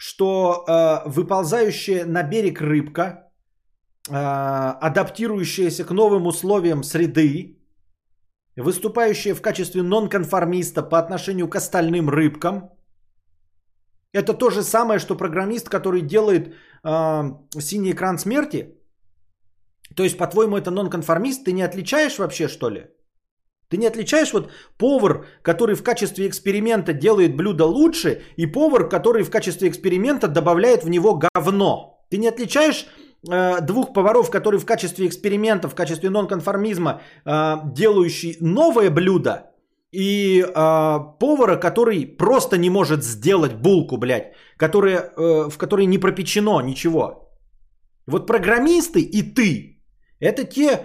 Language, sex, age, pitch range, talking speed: Bulgarian, male, 30-49, 165-210 Hz, 125 wpm